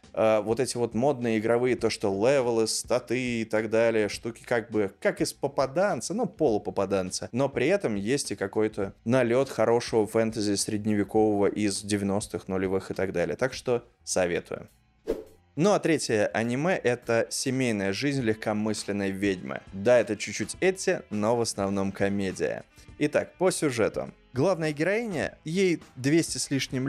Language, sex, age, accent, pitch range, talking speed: Russian, male, 20-39, native, 110-140 Hz, 145 wpm